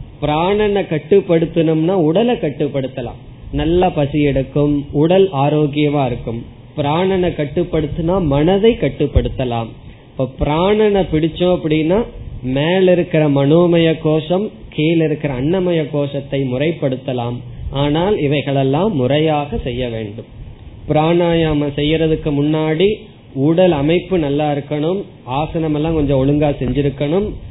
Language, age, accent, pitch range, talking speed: Tamil, 20-39, native, 125-170 Hz, 90 wpm